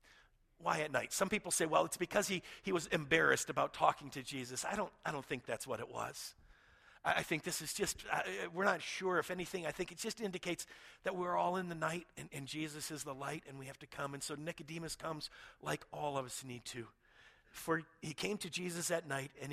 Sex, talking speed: male, 240 wpm